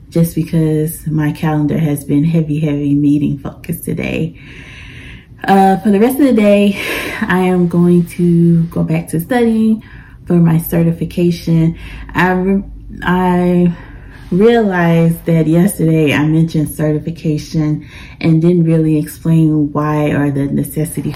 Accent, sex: American, female